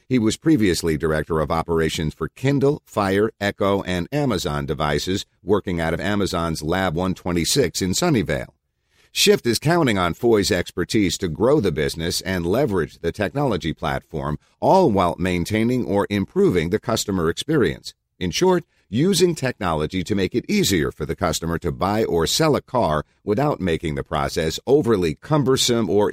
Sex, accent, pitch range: male, American, 85-115 Hz